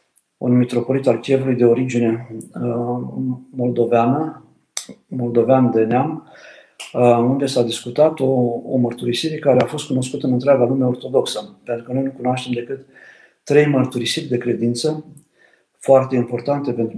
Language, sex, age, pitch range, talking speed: Romanian, male, 50-69, 120-135 Hz, 130 wpm